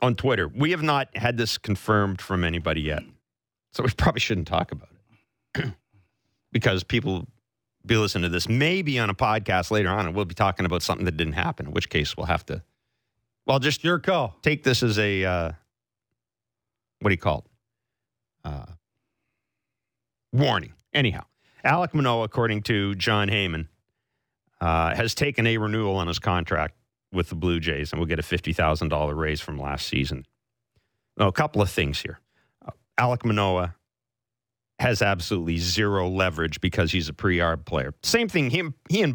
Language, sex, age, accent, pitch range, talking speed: English, male, 40-59, American, 90-125 Hz, 165 wpm